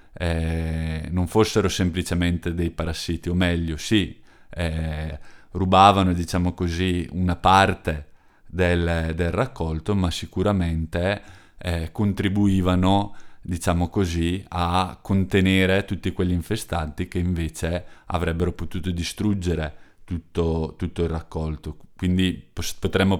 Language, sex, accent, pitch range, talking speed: Italian, male, native, 85-95 Hz, 105 wpm